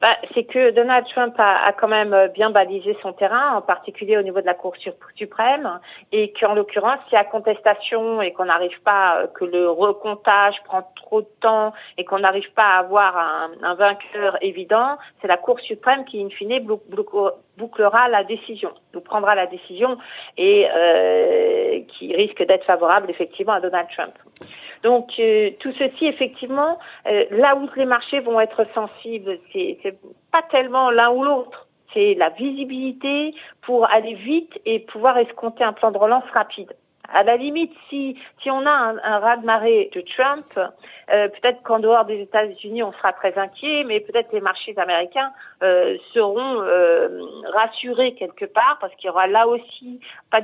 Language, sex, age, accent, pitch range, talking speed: French, female, 50-69, French, 195-260 Hz, 175 wpm